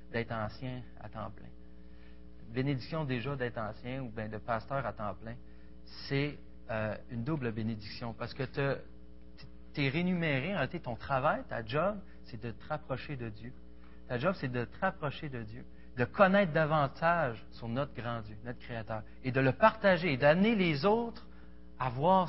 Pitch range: 105-145 Hz